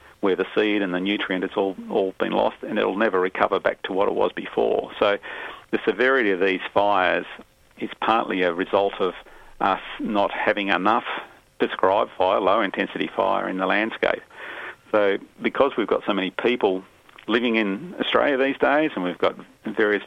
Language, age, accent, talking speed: English, 40-59, Australian, 175 wpm